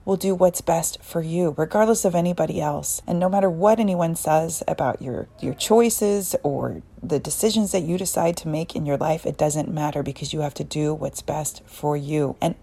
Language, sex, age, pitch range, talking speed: English, female, 30-49, 170-210 Hz, 210 wpm